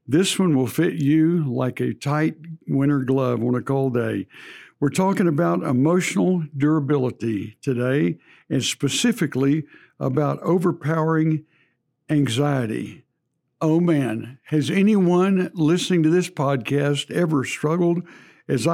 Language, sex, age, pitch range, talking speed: English, male, 60-79, 140-170 Hz, 115 wpm